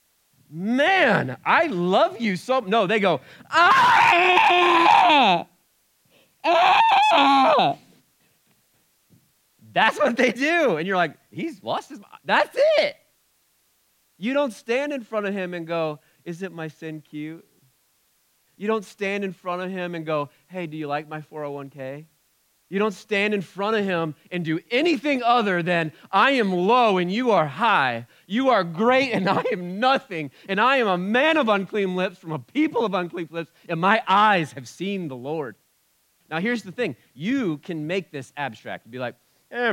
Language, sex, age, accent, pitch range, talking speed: English, male, 40-59, American, 150-235 Hz, 170 wpm